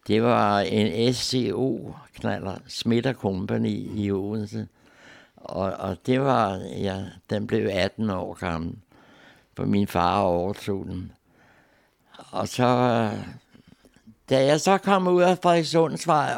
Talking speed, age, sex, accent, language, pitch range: 115 wpm, 60-79, male, native, Danish, 105-135 Hz